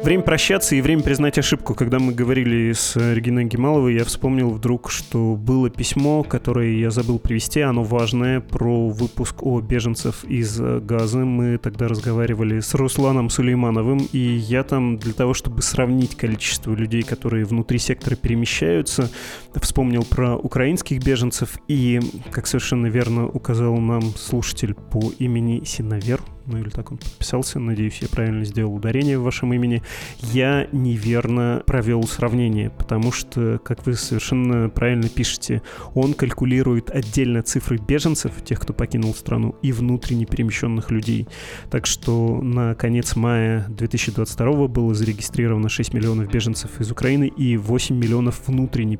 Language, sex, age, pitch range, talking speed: Russian, male, 20-39, 115-130 Hz, 145 wpm